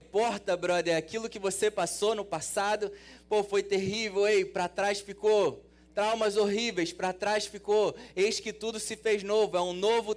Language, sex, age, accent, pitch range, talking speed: Portuguese, male, 20-39, Brazilian, 130-195 Hz, 175 wpm